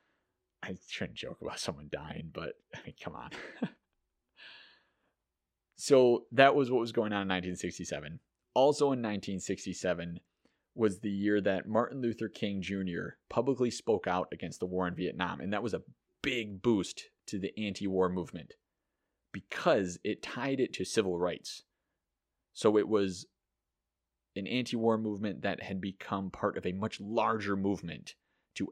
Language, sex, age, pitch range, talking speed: English, male, 30-49, 90-110 Hz, 145 wpm